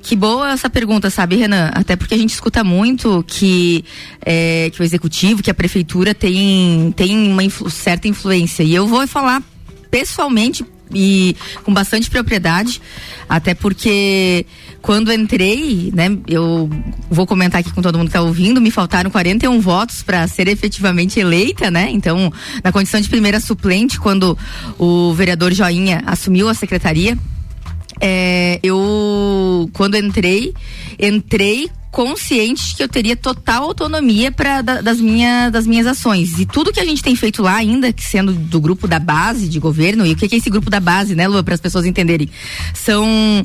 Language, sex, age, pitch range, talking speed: Portuguese, female, 20-39, 180-230 Hz, 160 wpm